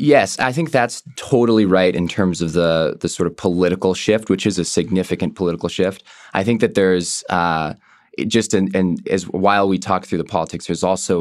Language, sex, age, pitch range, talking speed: English, male, 20-39, 80-95 Hz, 205 wpm